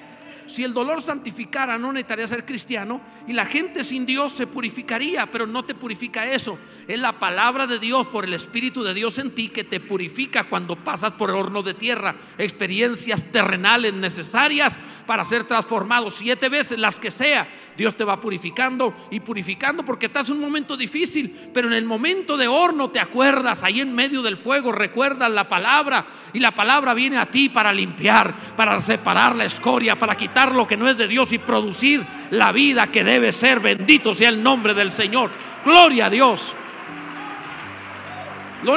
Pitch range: 205-270 Hz